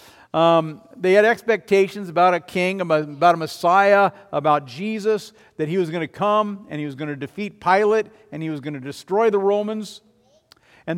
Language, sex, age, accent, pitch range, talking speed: English, male, 50-69, American, 145-205 Hz, 185 wpm